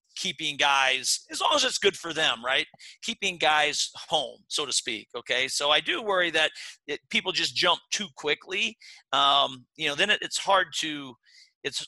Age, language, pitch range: 40-59, English, 130-160 Hz